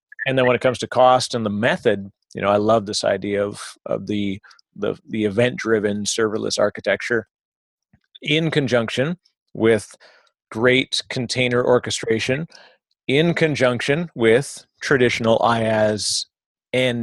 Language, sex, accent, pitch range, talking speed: English, male, American, 110-130 Hz, 125 wpm